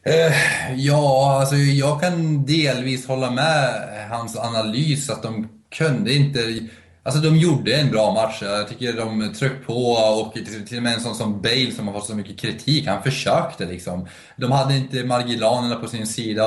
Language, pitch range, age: Swedish, 95-125 Hz, 20-39